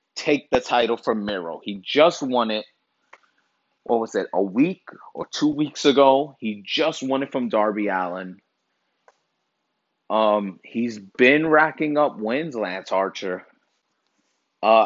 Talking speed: 135 wpm